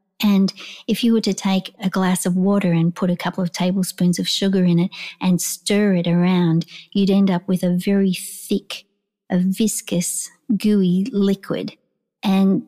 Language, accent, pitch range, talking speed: English, Australian, 185-215 Hz, 170 wpm